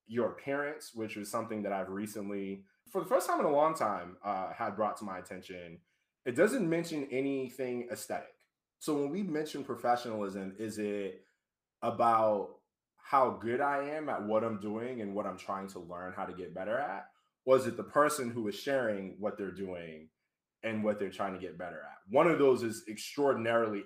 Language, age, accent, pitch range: English, 20-39, American, 100-120 Hz